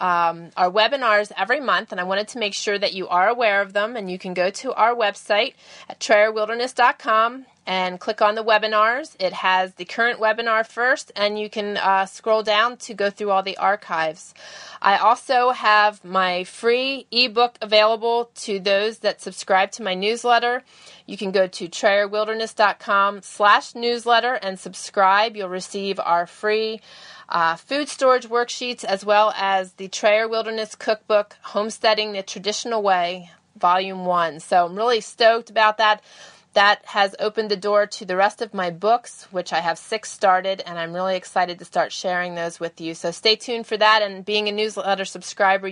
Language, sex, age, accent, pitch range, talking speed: English, female, 30-49, American, 185-220 Hz, 175 wpm